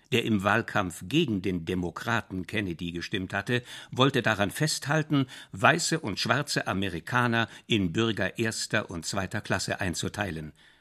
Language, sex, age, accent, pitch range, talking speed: German, male, 60-79, German, 105-135 Hz, 130 wpm